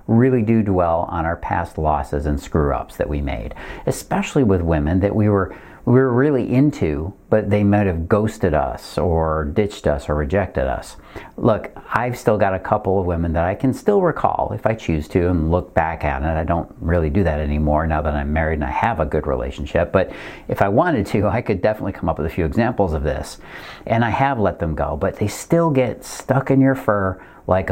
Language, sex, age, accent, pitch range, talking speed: English, male, 50-69, American, 80-120 Hz, 225 wpm